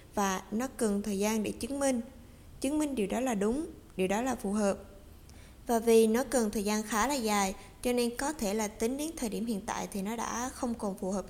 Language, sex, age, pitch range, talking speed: Vietnamese, female, 20-39, 205-250 Hz, 245 wpm